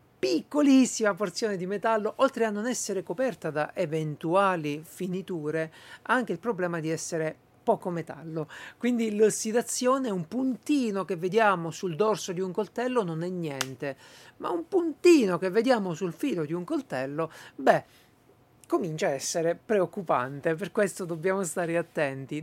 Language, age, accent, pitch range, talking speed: Italian, 50-69, native, 170-230 Hz, 145 wpm